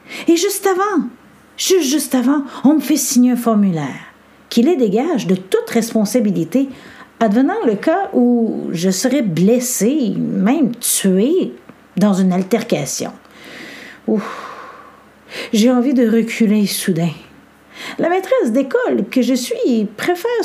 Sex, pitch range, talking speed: female, 200-295 Hz, 125 wpm